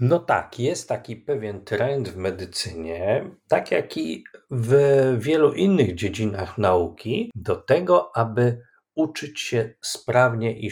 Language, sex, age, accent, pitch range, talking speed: Polish, male, 40-59, native, 100-130 Hz, 130 wpm